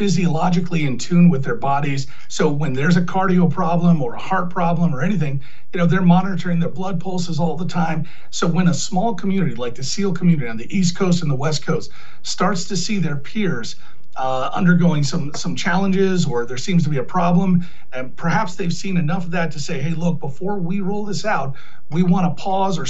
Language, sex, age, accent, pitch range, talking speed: English, male, 40-59, American, 160-185 Hz, 215 wpm